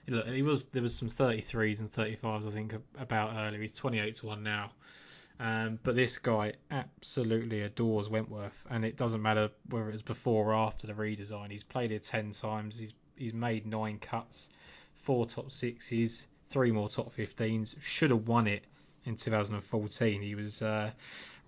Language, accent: English, British